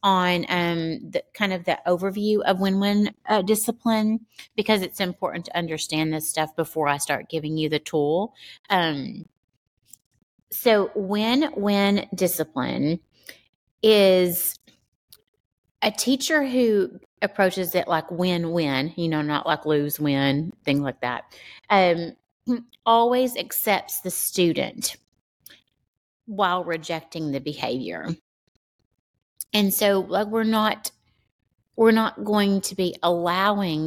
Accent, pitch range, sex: American, 155-200 Hz, female